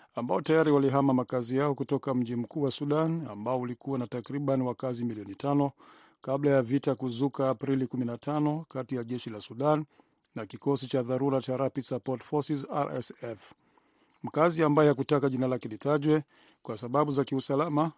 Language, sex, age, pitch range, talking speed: Swahili, male, 50-69, 125-145 Hz, 155 wpm